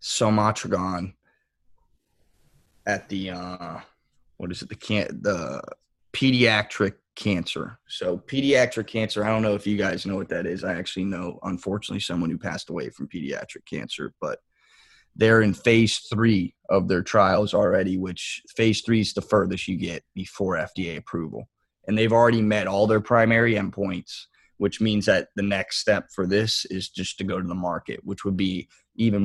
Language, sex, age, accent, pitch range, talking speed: English, male, 20-39, American, 95-115 Hz, 170 wpm